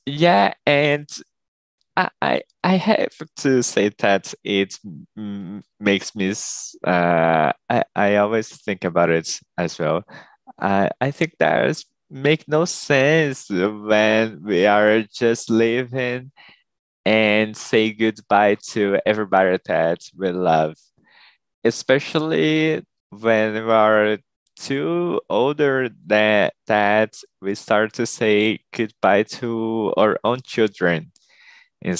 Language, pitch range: Portuguese, 95-125 Hz